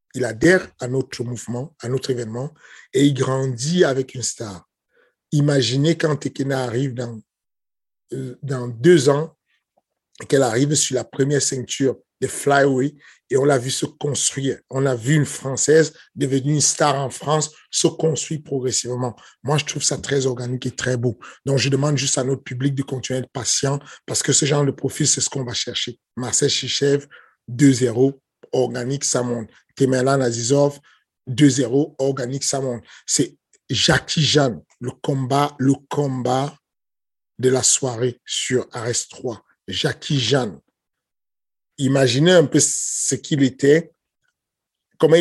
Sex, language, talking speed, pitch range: male, French, 150 wpm, 125-145 Hz